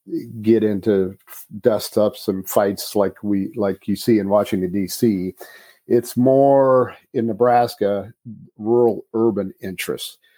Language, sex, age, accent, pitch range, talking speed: English, male, 50-69, American, 100-120 Hz, 115 wpm